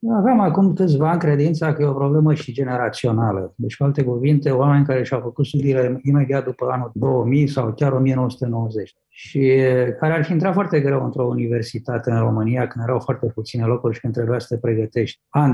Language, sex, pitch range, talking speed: Romanian, male, 120-155 Hz, 190 wpm